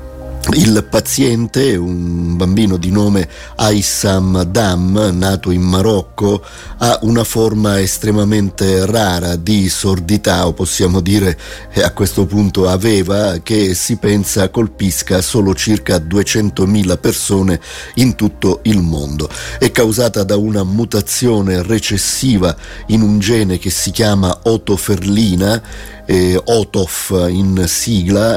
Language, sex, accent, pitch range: Italian, male, native, 95-110 Hz